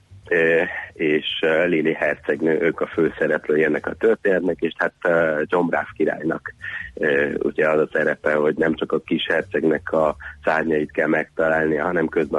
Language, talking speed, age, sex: Hungarian, 140 wpm, 30-49, male